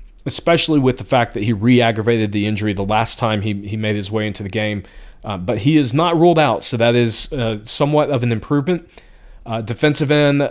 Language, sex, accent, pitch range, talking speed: English, male, American, 115-150 Hz, 215 wpm